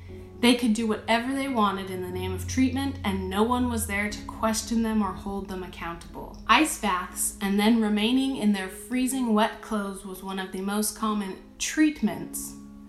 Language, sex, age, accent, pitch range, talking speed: English, female, 20-39, American, 190-230 Hz, 185 wpm